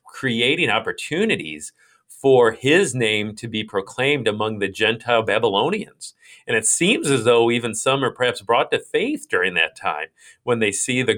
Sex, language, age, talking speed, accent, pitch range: male, English, 40-59, 165 wpm, American, 105-155 Hz